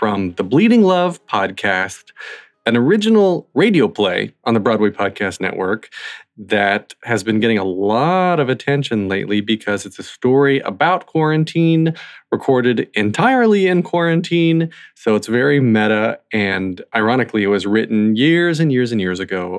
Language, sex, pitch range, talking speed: English, male, 105-145 Hz, 145 wpm